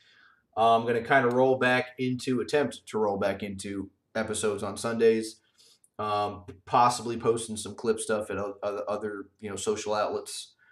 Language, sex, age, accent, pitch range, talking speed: English, male, 30-49, American, 100-125 Hz, 170 wpm